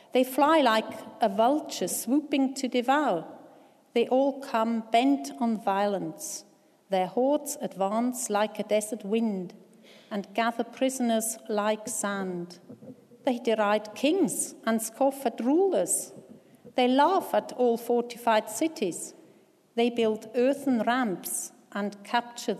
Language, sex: English, female